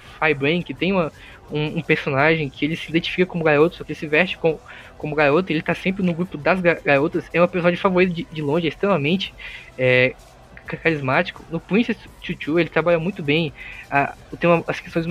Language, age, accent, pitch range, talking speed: Portuguese, 20-39, Brazilian, 150-180 Hz, 205 wpm